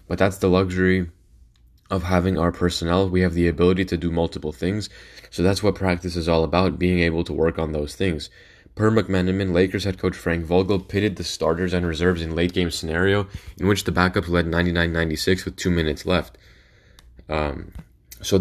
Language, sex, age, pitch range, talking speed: English, male, 20-39, 80-95 Hz, 190 wpm